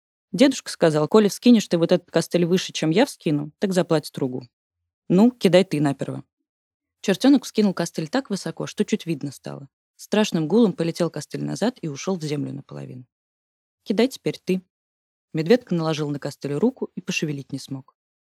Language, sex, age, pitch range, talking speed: Russian, female, 20-39, 135-190 Hz, 165 wpm